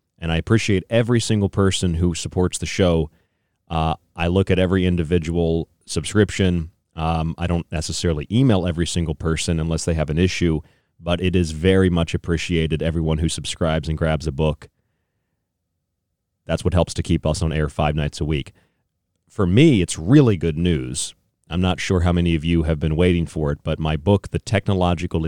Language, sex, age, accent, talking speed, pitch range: English, male, 30-49, American, 185 wpm, 80-95 Hz